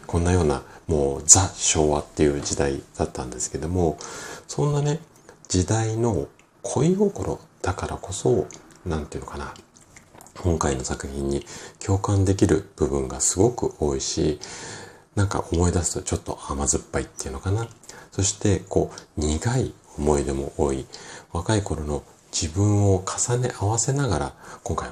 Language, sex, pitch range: Japanese, male, 75-100 Hz